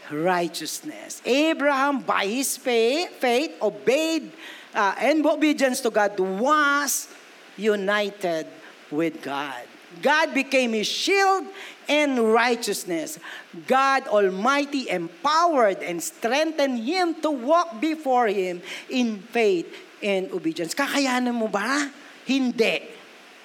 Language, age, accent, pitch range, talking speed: Filipino, 50-69, native, 220-305 Hz, 100 wpm